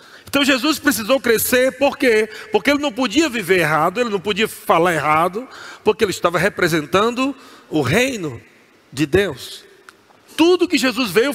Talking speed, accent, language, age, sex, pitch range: 155 wpm, Brazilian, Portuguese, 40-59, male, 190-250 Hz